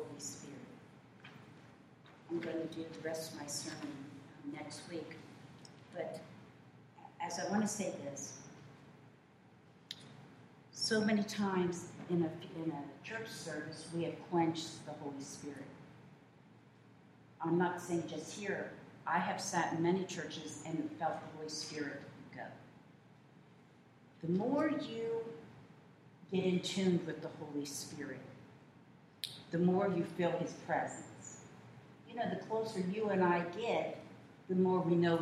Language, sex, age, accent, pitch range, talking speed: English, female, 50-69, American, 150-175 Hz, 135 wpm